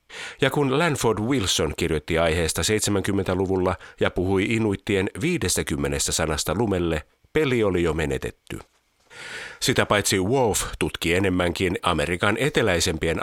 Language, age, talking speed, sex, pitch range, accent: Finnish, 50-69, 110 wpm, male, 85-110 Hz, native